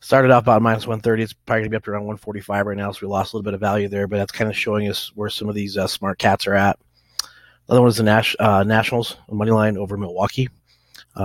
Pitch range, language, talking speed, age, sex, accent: 100-120 Hz, English, 280 wpm, 30-49, male, American